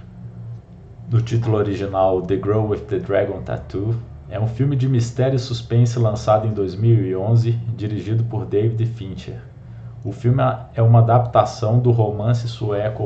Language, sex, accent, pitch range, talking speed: Portuguese, male, Brazilian, 105-120 Hz, 140 wpm